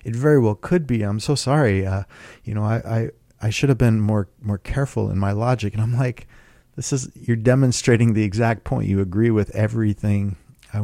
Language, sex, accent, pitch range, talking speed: English, male, American, 95-120 Hz, 210 wpm